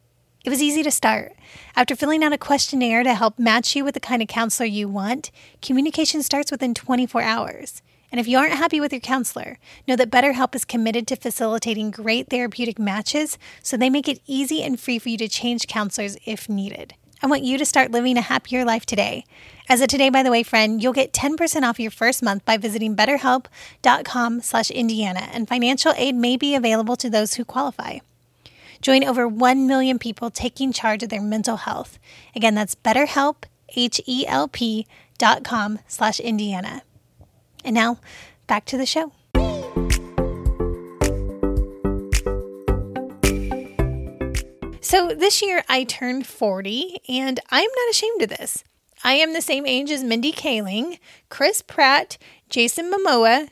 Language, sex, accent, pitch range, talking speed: English, female, American, 220-270 Hz, 165 wpm